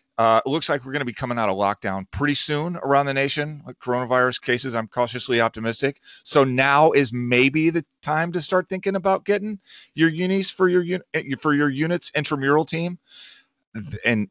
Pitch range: 110-140 Hz